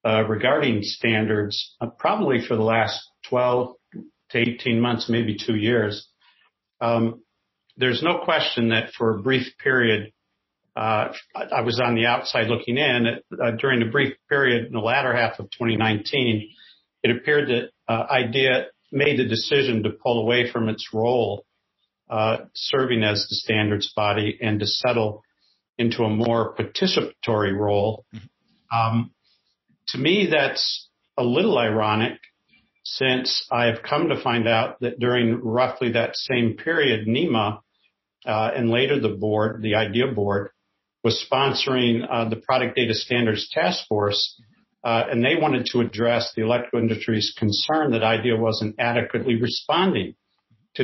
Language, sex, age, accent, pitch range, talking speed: English, male, 50-69, American, 110-120 Hz, 145 wpm